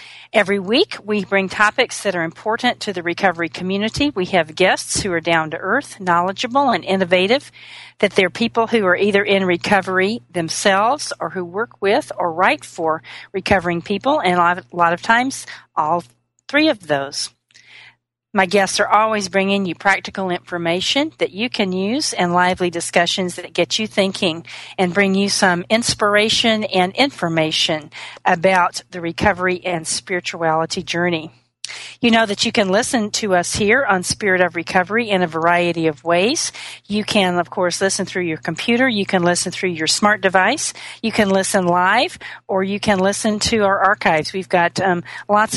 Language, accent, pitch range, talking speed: English, American, 175-205 Hz, 175 wpm